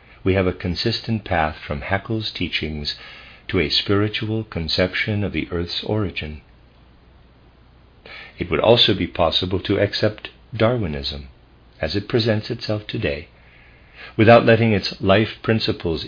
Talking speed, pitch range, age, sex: 125 wpm, 75-110 Hz, 50-69, male